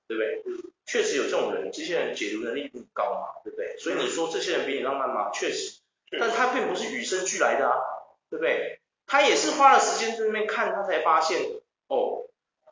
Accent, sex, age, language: native, male, 30-49, Chinese